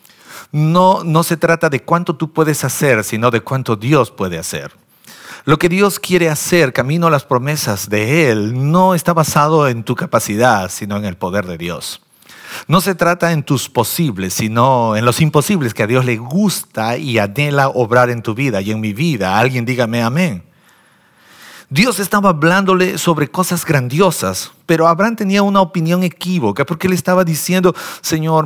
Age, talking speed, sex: 50-69, 175 wpm, male